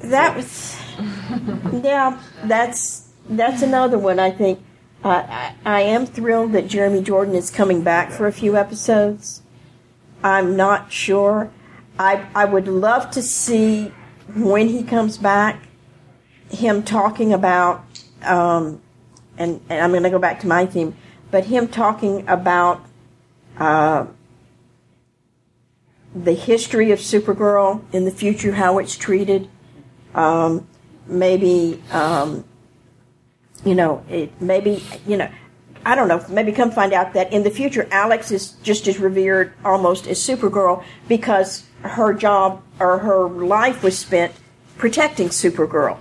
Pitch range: 175-210 Hz